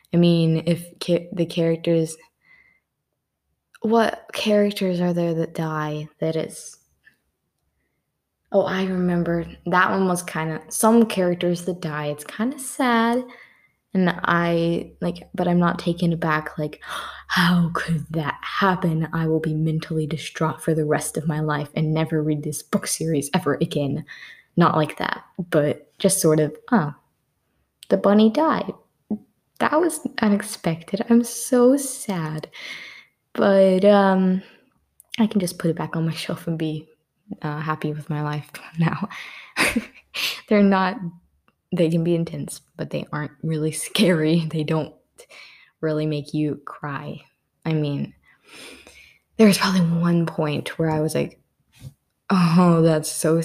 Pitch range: 155-190 Hz